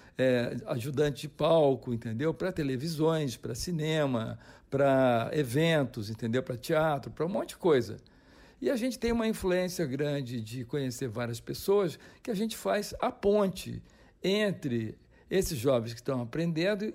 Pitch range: 135-190 Hz